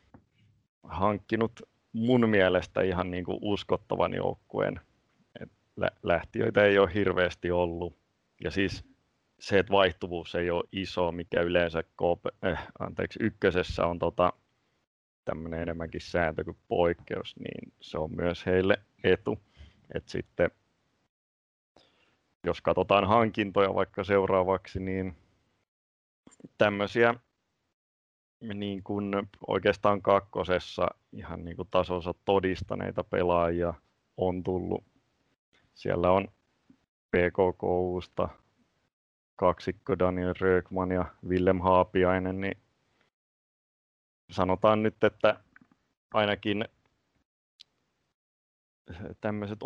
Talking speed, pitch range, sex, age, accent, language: 90 wpm, 85-100 Hz, male, 30-49, native, Finnish